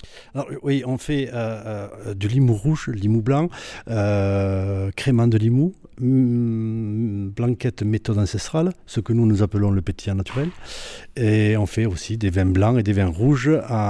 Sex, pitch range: male, 105-135 Hz